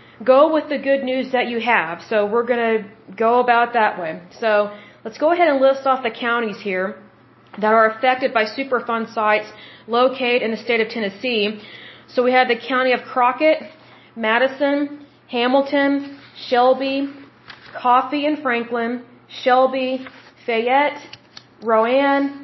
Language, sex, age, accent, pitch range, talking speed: Hindi, female, 30-49, American, 235-275 Hz, 145 wpm